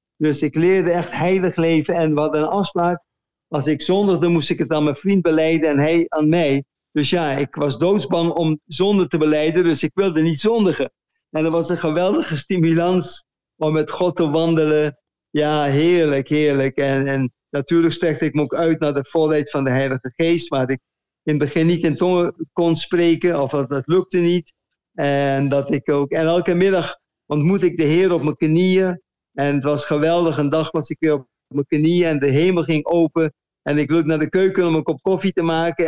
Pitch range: 145-170 Hz